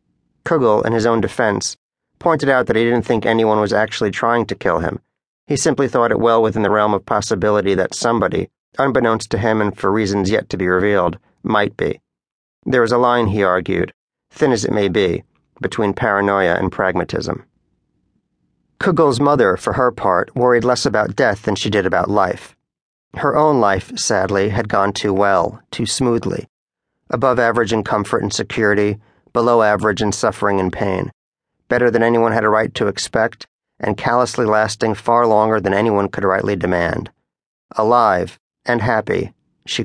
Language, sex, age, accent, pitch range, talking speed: English, male, 40-59, American, 105-120 Hz, 175 wpm